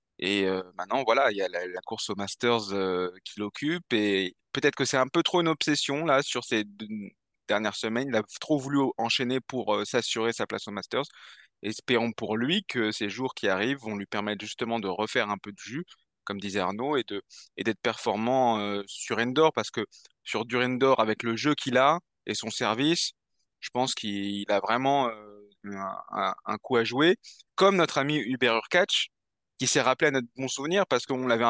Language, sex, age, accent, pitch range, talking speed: French, male, 20-39, French, 110-140 Hz, 210 wpm